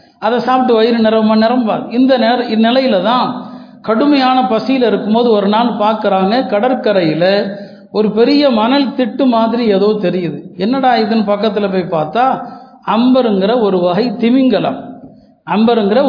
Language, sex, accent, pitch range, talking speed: Tamil, male, native, 210-255 Hz, 125 wpm